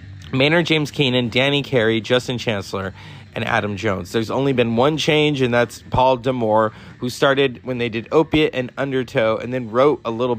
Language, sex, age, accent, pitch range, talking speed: English, male, 30-49, American, 125-200 Hz, 185 wpm